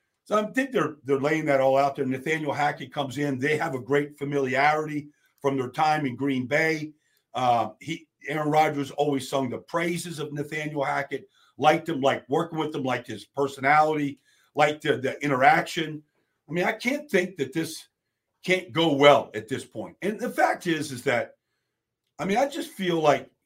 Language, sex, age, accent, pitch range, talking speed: English, male, 50-69, American, 145-190 Hz, 185 wpm